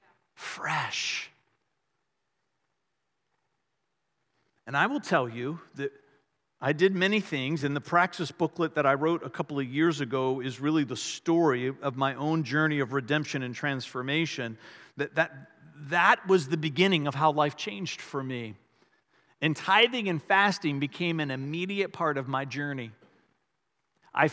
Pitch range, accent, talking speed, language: 145-180 Hz, American, 145 wpm, English